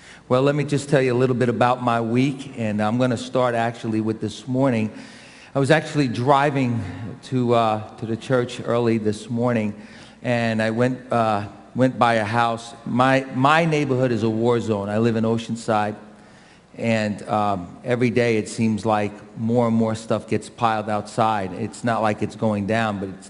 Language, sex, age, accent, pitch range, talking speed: English, male, 40-59, American, 105-120 Hz, 190 wpm